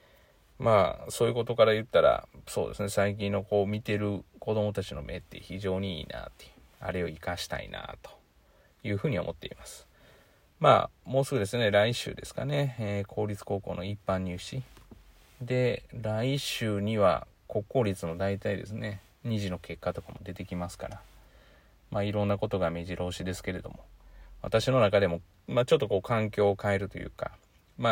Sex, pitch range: male, 90-110 Hz